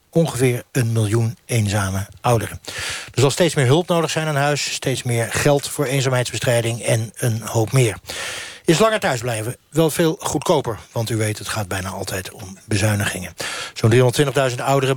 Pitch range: 115-140 Hz